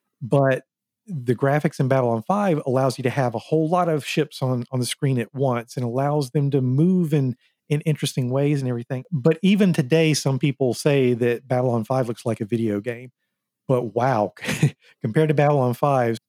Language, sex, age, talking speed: English, male, 40-59, 205 wpm